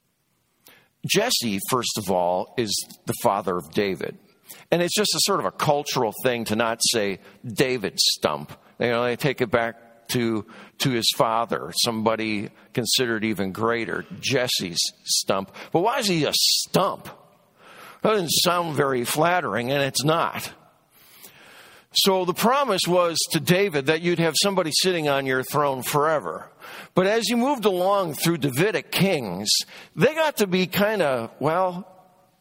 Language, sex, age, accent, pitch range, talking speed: English, male, 50-69, American, 120-180 Hz, 155 wpm